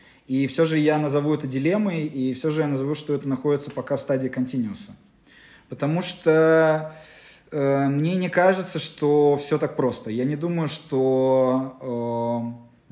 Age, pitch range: 20-39, 120-155 Hz